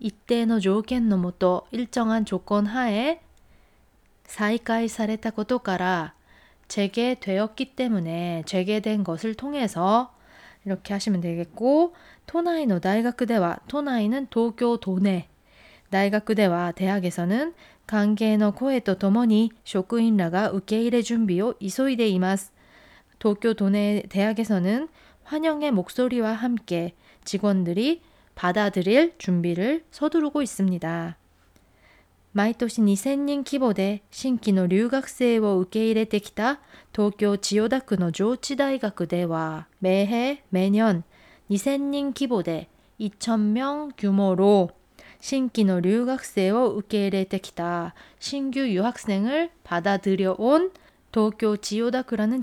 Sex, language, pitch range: female, Korean, 190-245 Hz